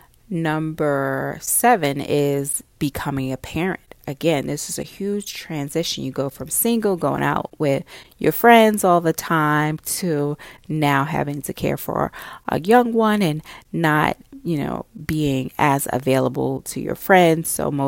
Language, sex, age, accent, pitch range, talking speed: English, female, 30-49, American, 140-185 Hz, 150 wpm